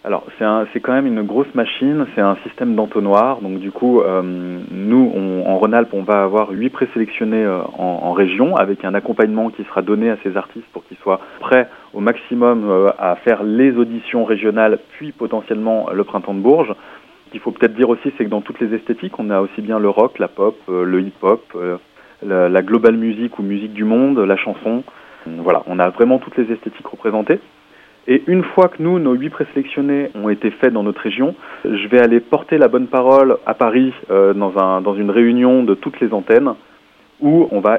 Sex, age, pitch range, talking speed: male, 30-49, 100-125 Hz, 215 wpm